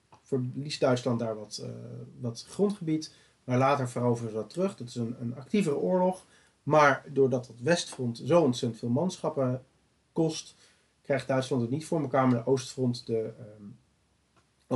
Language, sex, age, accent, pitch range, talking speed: Dutch, male, 40-59, Dutch, 120-150 Hz, 160 wpm